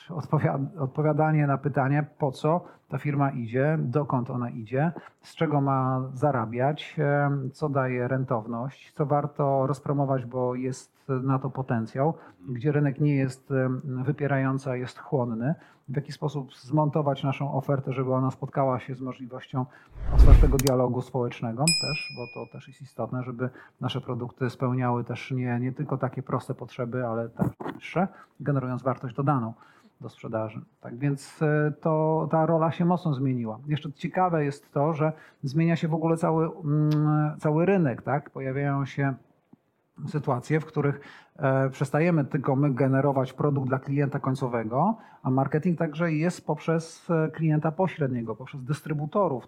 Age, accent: 40-59, native